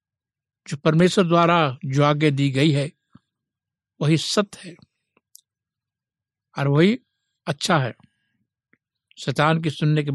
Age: 60-79